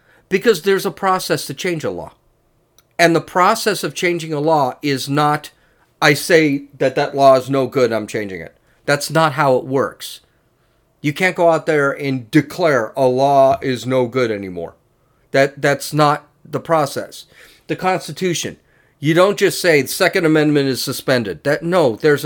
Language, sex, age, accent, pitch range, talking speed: English, male, 40-59, American, 140-180 Hz, 175 wpm